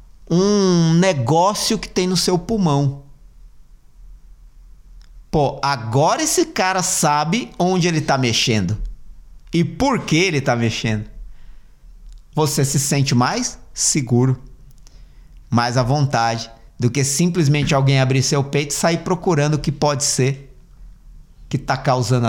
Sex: male